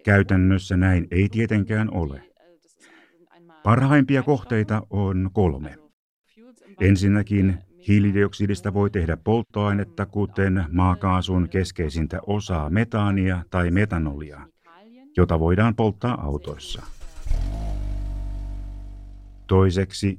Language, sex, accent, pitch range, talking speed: Finnish, male, native, 90-110 Hz, 75 wpm